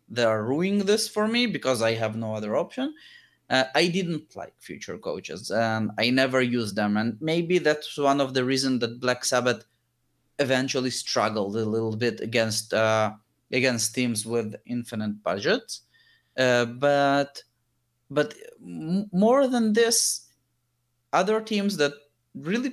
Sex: male